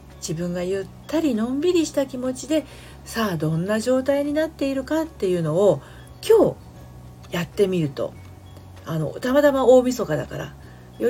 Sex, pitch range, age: female, 140-205 Hz, 40-59